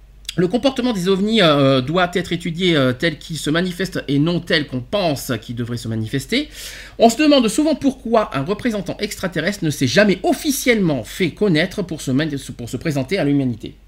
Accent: French